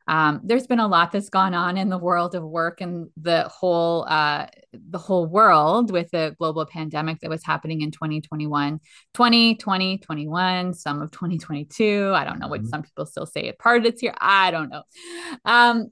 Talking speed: 190 wpm